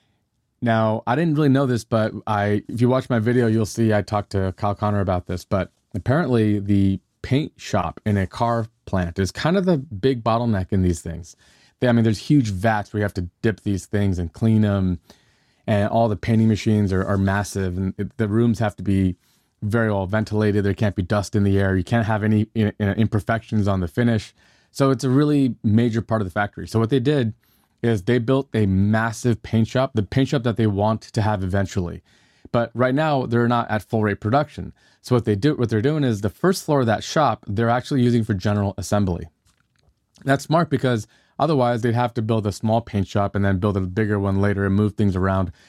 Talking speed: 225 wpm